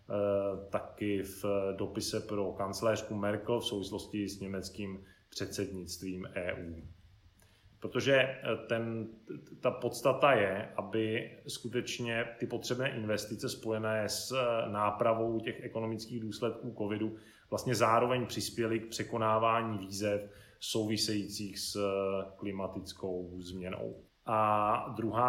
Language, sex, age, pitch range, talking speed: Czech, male, 30-49, 100-115 Hz, 95 wpm